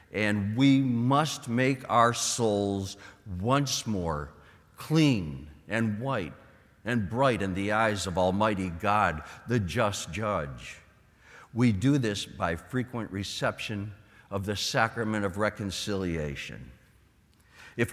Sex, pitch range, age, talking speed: male, 105-145 Hz, 60-79, 115 wpm